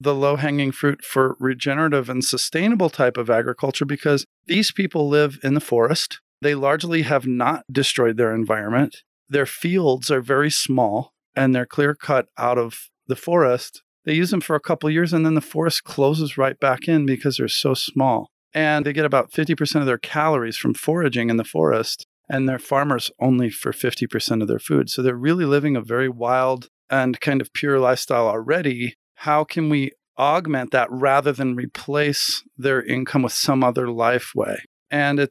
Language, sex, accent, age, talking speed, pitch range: English, male, American, 40-59, 185 wpm, 125-150 Hz